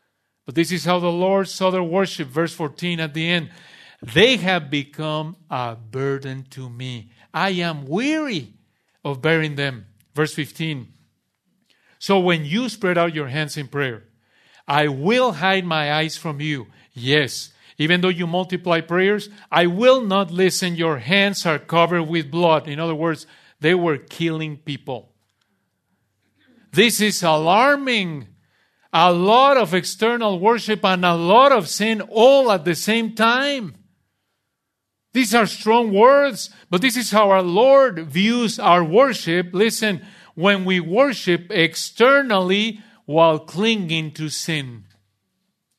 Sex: male